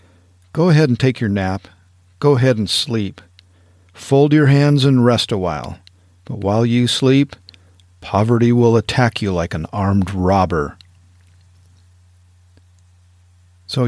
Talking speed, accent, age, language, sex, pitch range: 130 wpm, American, 50-69, English, male, 90-125 Hz